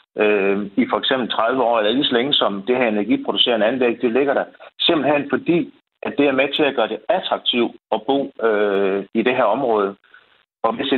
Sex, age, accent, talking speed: male, 60-79, native, 210 wpm